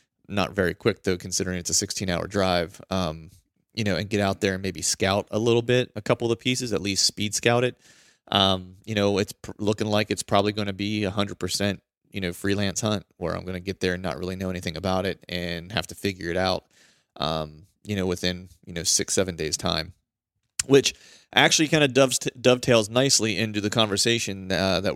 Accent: American